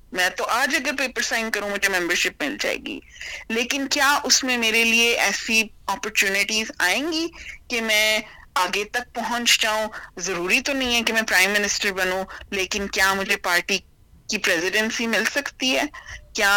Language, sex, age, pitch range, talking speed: Urdu, female, 30-49, 195-250 Hz, 170 wpm